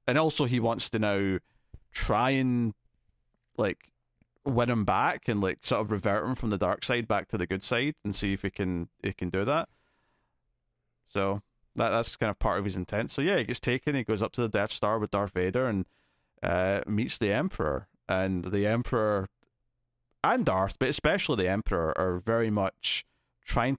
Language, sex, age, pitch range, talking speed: English, male, 30-49, 100-125 Hz, 195 wpm